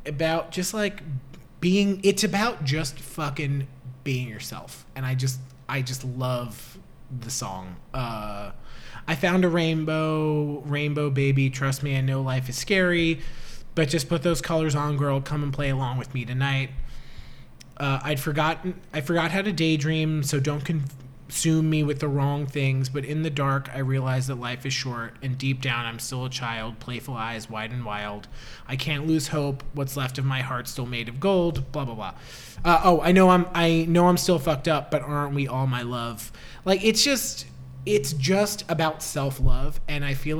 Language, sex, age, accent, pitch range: Chinese, male, 20-39, American, 130-155 Hz